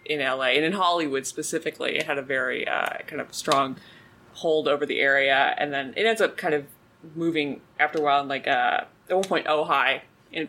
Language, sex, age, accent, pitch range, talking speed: English, female, 20-39, American, 140-190 Hz, 200 wpm